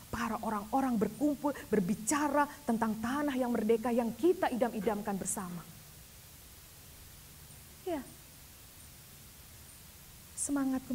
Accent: native